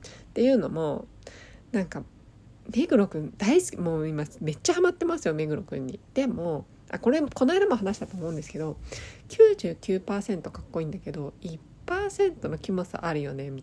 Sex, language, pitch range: female, Japanese, 145-225 Hz